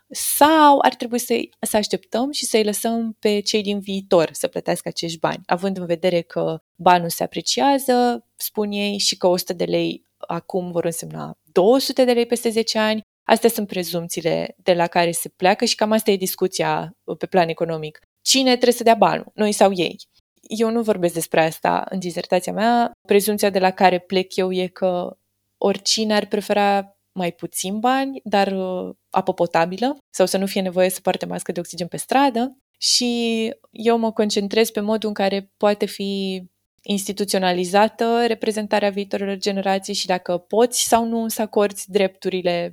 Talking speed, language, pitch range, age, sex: 170 wpm, Romanian, 180-225 Hz, 20-39, female